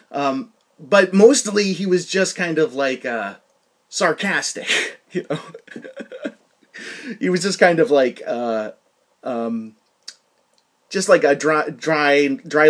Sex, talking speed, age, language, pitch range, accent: male, 125 wpm, 30-49, English, 125-165 Hz, American